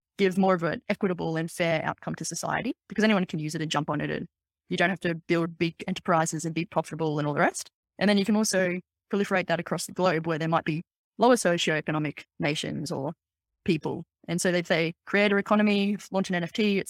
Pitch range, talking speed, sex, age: 170-200 Hz, 225 wpm, female, 20-39